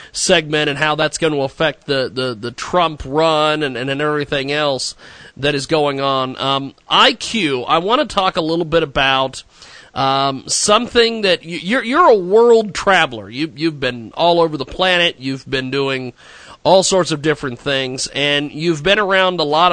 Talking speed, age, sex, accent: 185 wpm, 40-59, male, American